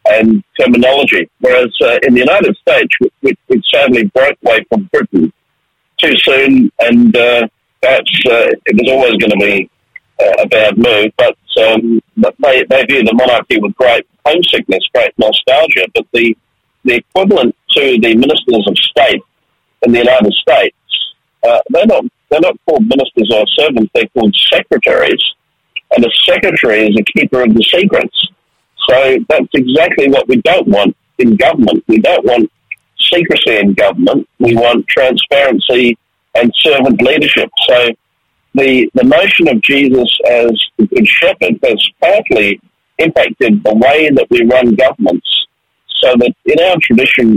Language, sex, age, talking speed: English, male, 50-69, 155 wpm